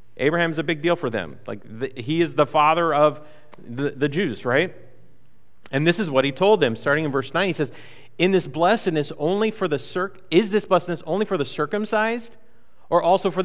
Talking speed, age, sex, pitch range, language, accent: 205 wpm, 30-49, male, 135-185 Hz, English, American